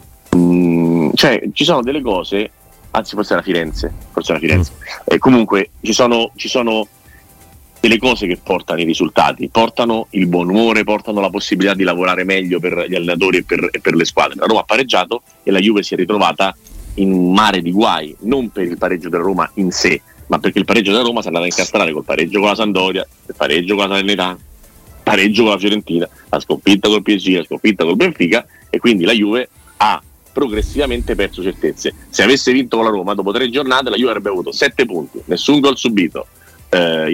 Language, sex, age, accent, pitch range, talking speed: Italian, male, 40-59, native, 90-110 Hz, 205 wpm